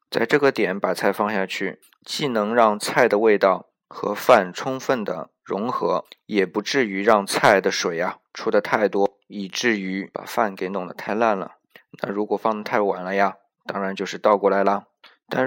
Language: Chinese